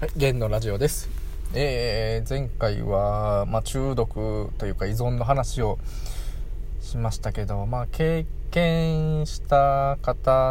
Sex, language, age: male, Japanese, 20-39